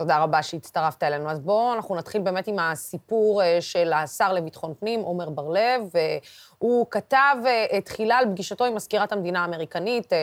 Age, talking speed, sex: 20-39, 155 wpm, female